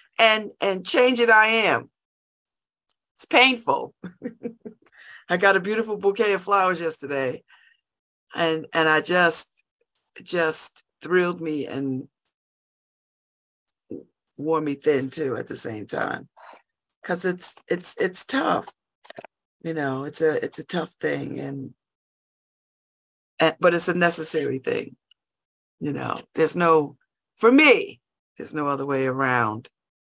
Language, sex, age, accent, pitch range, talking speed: English, female, 50-69, American, 155-235 Hz, 125 wpm